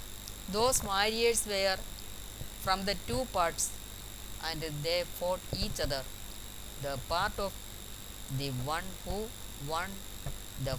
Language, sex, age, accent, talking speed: Malayalam, female, 20-39, native, 110 wpm